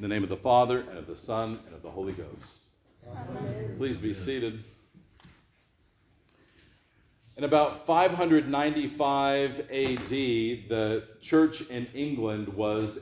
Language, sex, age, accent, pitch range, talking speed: English, male, 50-69, American, 110-135 Hz, 125 wpm